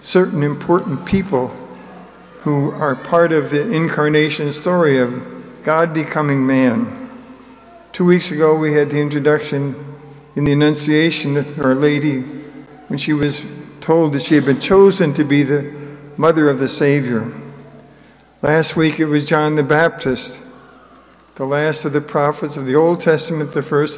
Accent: American